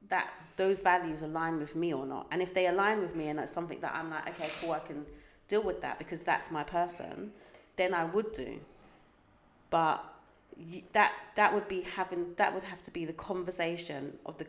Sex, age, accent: female, 30-49, British